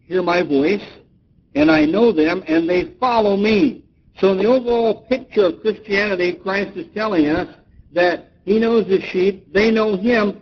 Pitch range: 140-215 Hz